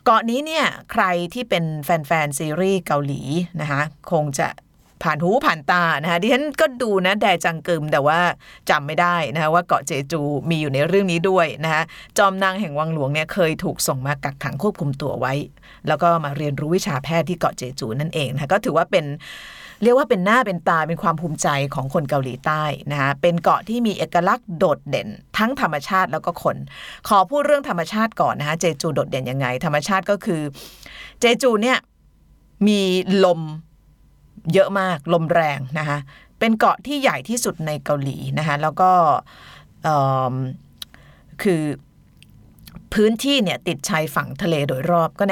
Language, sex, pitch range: Thai, female, 150-205 Hz